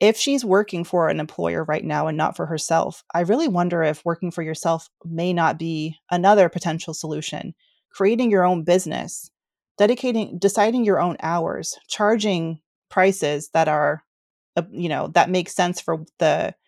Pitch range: 165-195 Hz